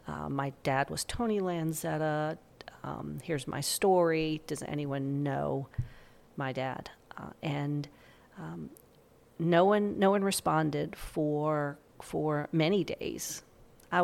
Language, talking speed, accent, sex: English, 120 wpm, American, female